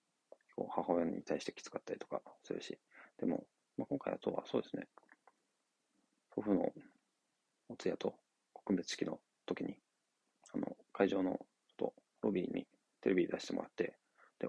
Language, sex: Japanese, male